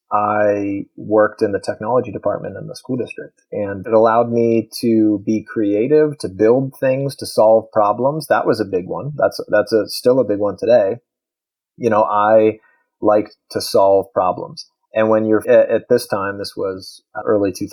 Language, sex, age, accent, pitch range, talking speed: English, male, 30-49, American, 105-125 Hz, 180 wpm